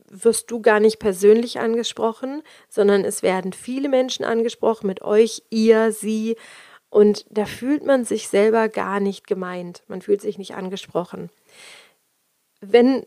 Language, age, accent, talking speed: German, 30-49, German, 140 wpm